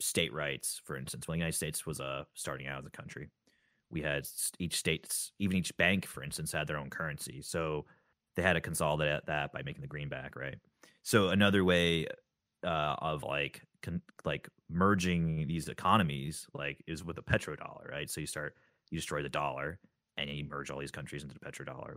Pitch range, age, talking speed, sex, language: 75-100 Hz, 30-49, 200 wpm, male, English